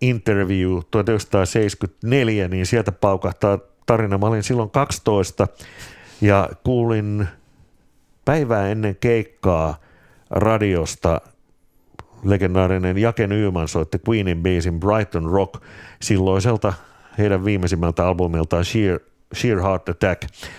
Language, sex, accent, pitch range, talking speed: Finnish, male, native, 90-110 Hz, 90 wpm